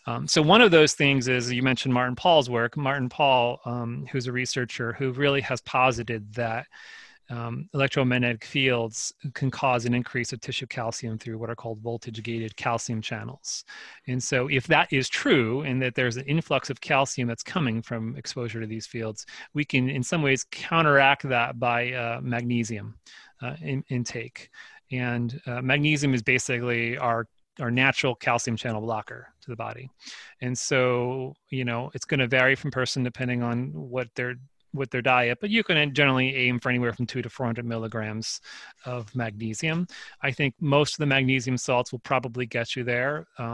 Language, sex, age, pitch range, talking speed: English, male, 30-49, 120-135 Hz, 175 wpm